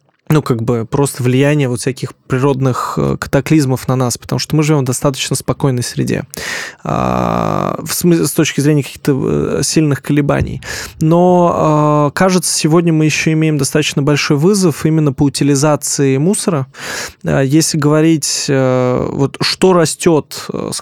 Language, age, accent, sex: Russian, 20-39, native, male